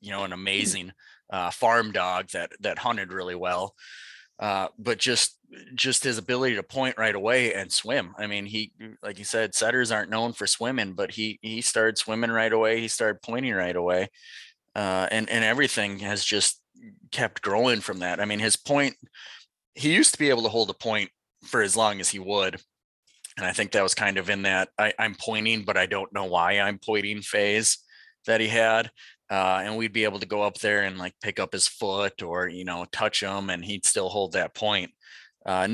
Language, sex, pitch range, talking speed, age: English, male, 95-110 Hz, 210 wpm, 30-49